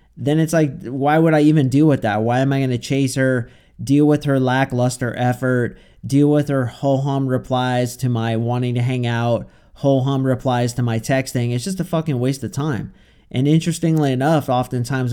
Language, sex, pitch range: English, male, 120-150 Hz